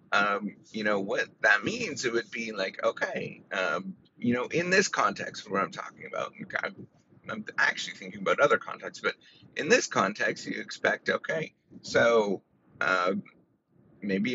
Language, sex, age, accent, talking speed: English, male, 30-49, American, 155 wpm